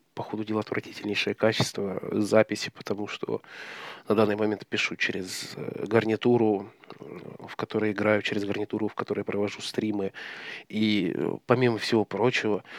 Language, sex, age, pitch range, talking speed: Russian, male, 20-39, 105-120 Hz, 120 wpm